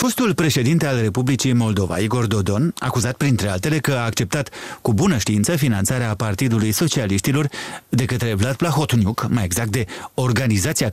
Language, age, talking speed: Romanian, 30-49, 150 wpm